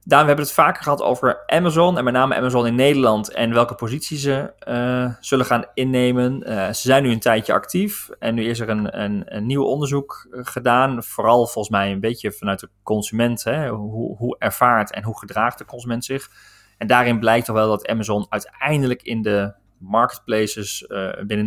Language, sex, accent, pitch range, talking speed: Dutch, male, Dutch, 105-125 Hz, 195 wpm